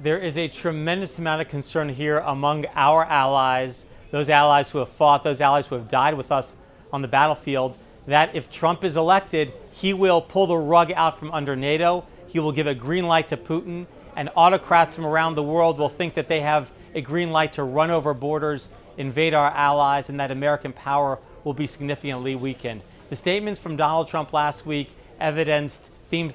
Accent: American